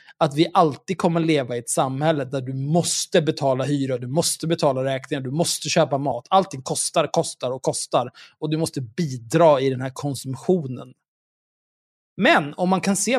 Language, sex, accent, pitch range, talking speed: Swedish, male, native, 140-185 Hz, 175 wpm